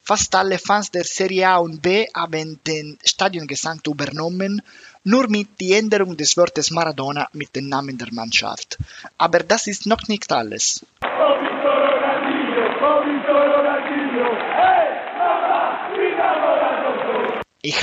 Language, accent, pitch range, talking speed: German, Italian, 145-205 Hz, 105 wpm